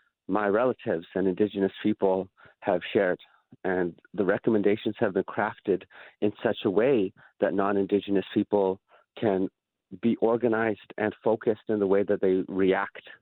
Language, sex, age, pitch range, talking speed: English, male, 30-49, 100-120 Hz, 140 wpm